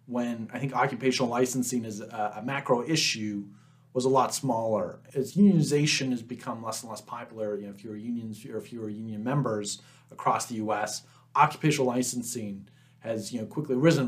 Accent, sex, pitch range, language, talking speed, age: American, male, 105-130 Hz, English, 175 wpm, 30-49